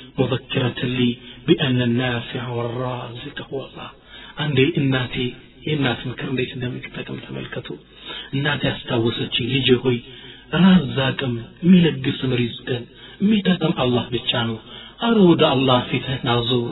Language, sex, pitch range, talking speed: Amharic, male, 130-160 Hz, 100 wpm